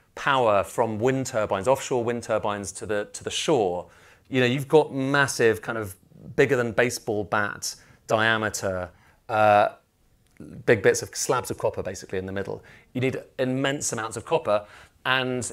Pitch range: 100-125 Hz